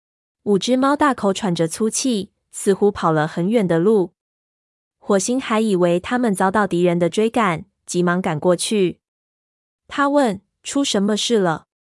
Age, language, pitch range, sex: 20-39, Chinese, 175-220 Hz, female